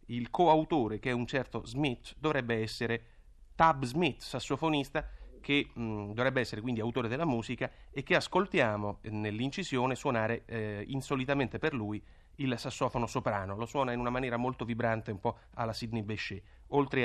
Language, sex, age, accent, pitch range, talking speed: Italian, male, 30-49, native, 110-140 Hz, 160 wpm